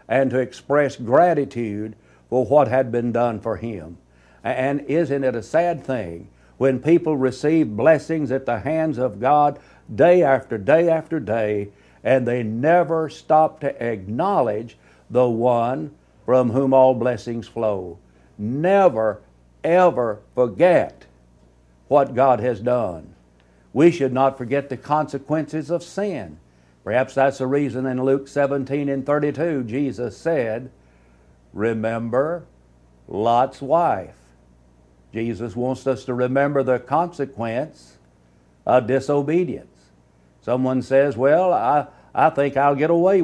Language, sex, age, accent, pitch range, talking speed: English, male, 60-79, American, 90-140 Hz, 125 wpm